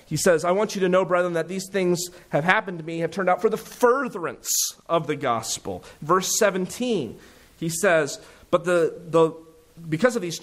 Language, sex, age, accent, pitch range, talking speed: English, male, 30-49, American, 155-205 Hz, 195 wpm